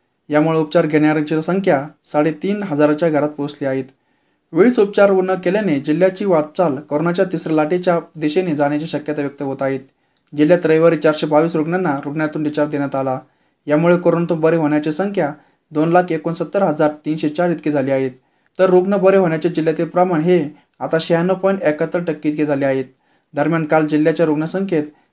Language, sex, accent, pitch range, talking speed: Marathi, male, native, 150-175 Hz, 135 wpm